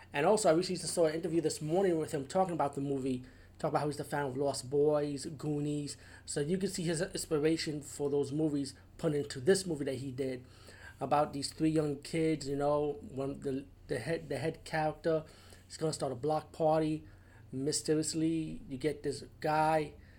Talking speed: 195 wpm